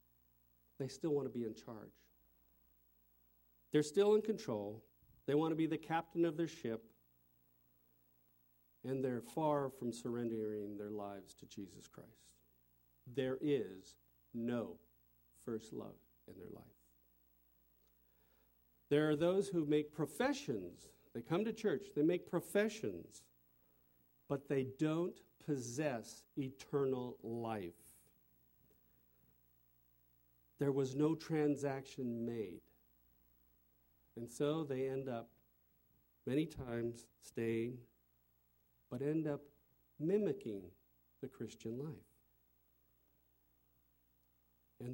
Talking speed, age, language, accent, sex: 105 wpm, 50-69, English, American, male